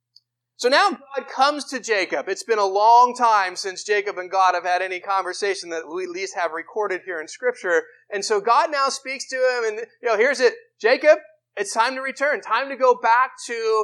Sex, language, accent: male, English, American